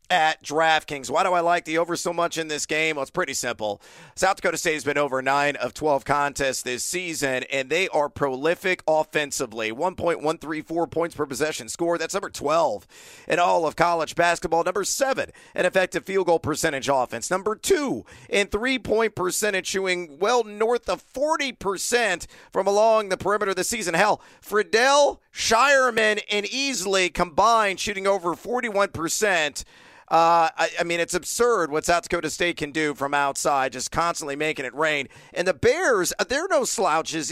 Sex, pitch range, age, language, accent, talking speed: male, 150-190 Hz, 40-59, English, American, 170 wpm